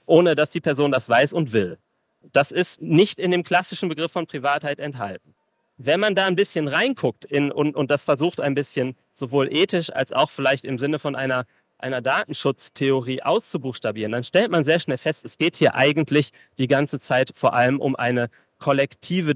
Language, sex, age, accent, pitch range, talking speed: German, male, 30-49, German, 130-155 Hz, 185 wpm